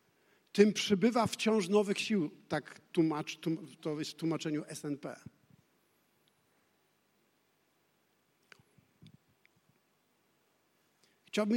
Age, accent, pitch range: 50-69, native, 145-200 Hz